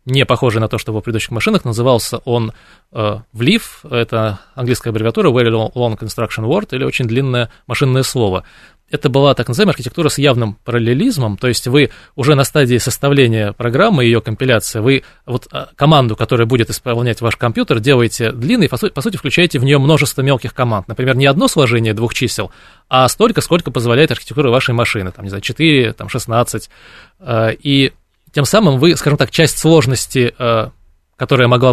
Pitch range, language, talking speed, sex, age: 110-140 Hz, Russian, 175 wpm, male, 20-39